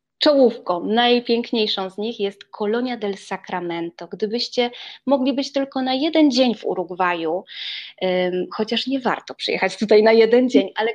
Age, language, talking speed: 20-39, Polish, 150 wpm